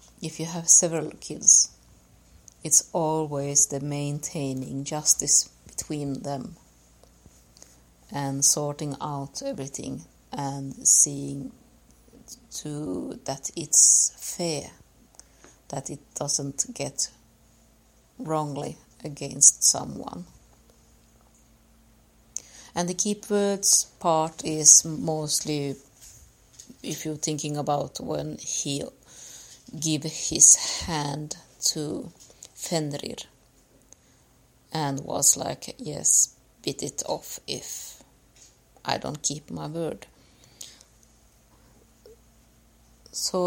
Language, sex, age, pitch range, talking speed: English, female, 50-69, 140-160 Hz, 85 wpm